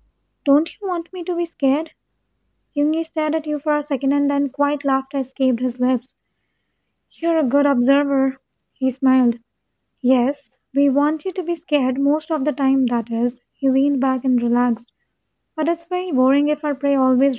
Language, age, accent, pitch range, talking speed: English, 20-39, Indian, 245-290 Hz, 185 wpm